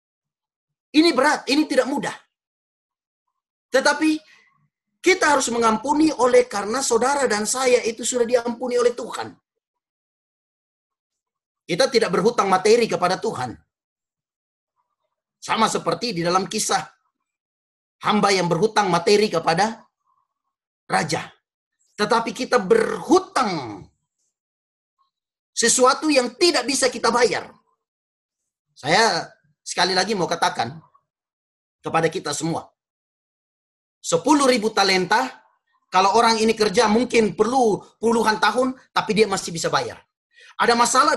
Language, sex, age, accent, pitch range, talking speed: Indonesian, male, 30-49, native, 160-250 Hz, 100 wpm